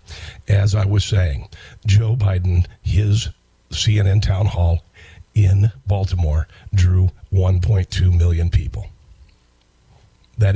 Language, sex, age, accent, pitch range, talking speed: English, male, 50-69, American, 90-105 Hz, 95 wpm